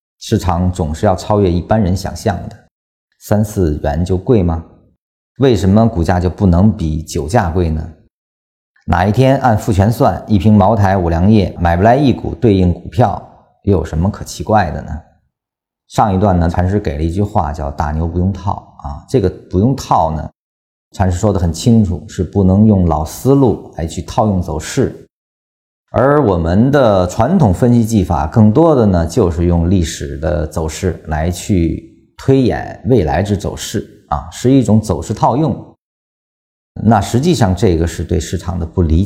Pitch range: 80-105 Hz